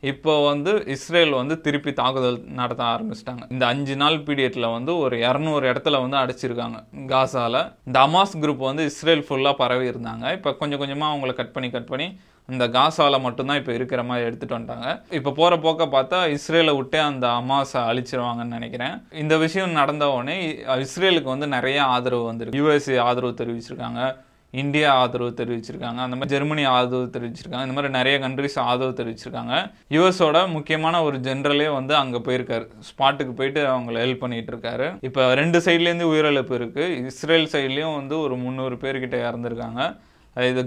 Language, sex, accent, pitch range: Tamil, male, native, 125-145 Hz